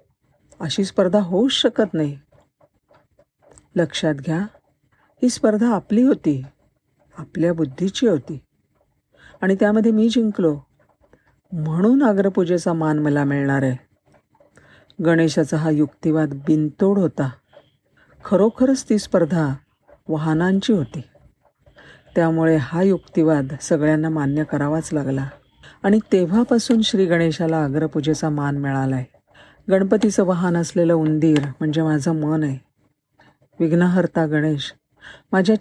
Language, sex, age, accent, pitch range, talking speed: Marathi, female, 50-69, native, 150-190 Hz, 100 wpm